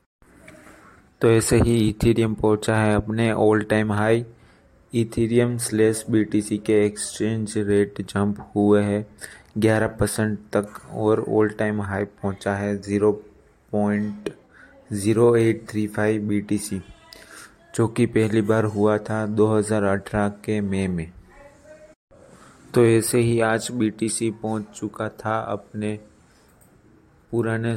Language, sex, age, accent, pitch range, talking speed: Hindi, male, 30-49, native, 105-115 Hz, 110 wpm